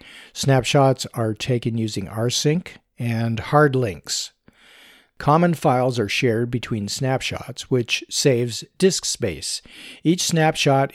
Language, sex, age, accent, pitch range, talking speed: English, male, 50-69, American, 110-150 Hz, 110 wpm